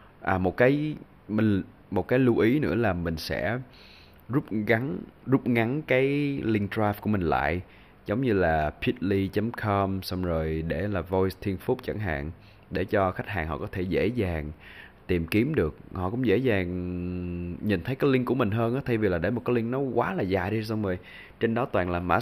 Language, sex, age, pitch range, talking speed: Vietnamese, male, 20-39, 85-110 Hz, 210 wpm